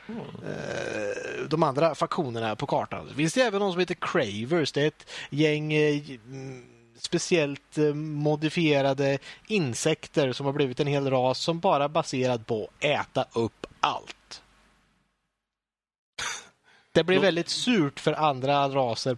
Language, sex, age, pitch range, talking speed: Swedish, male, 30-49, 140-180 Hz, 120 wpm